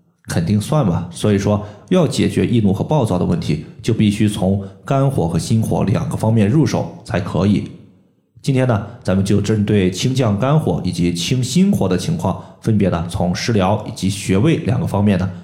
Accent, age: native, 20-39